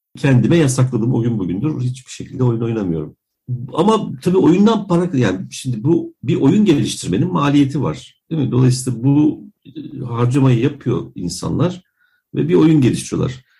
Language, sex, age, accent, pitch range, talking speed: Turkish, male, 50-69, native, 115-150 Hz, 140 wpm